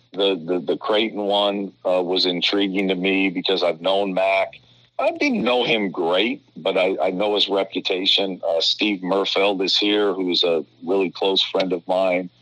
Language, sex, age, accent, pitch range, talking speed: English, male, 50-69, American, 95-110 Hz, 180 wpm